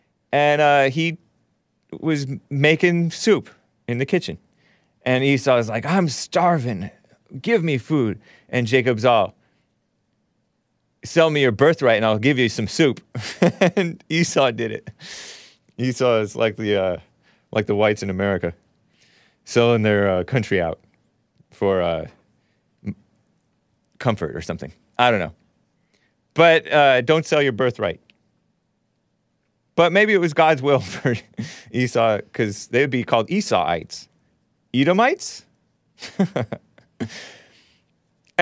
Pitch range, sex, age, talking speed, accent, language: 115-190 Hz, male, 30-49, 125 wpm, American, English